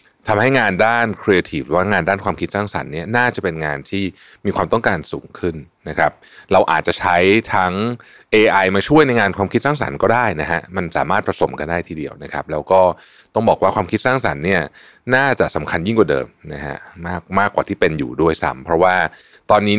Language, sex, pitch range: Thai, male, 80-110 Hz